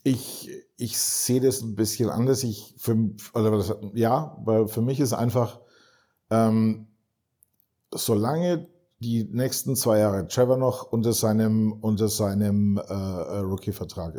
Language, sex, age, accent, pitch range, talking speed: German, male, 50-69, German, 100-115 Hz, 110 wpm